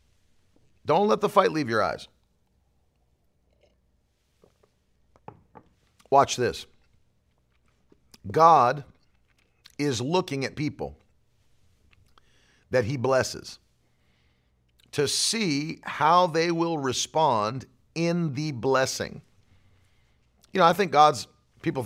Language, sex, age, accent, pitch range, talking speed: English, male, 50-69, American, 110-165 Hz, 90 wpm